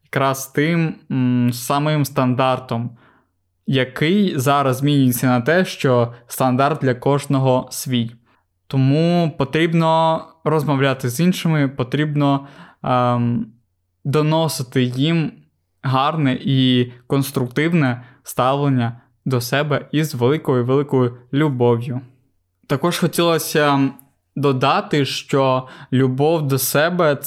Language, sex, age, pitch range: Ukrainian, male, 20-39, 125-150 Hz